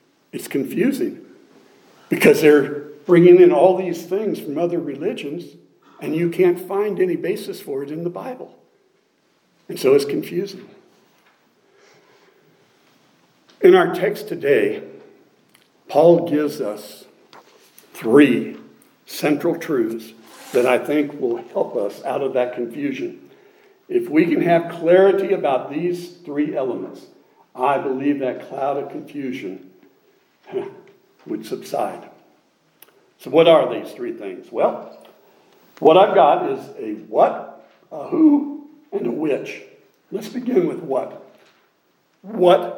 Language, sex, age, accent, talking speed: English, male, 60-79, American, 120 wpm